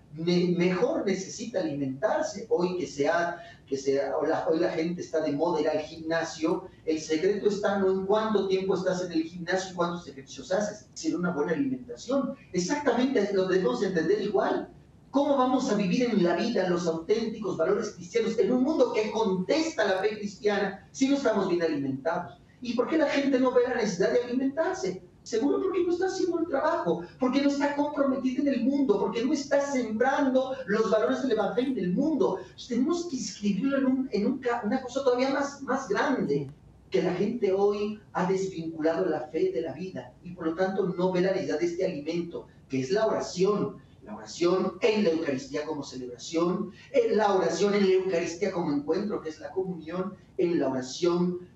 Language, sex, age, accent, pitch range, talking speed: Spanish, male, 40-59, Mexican, 170-255 Hz, 195 wpm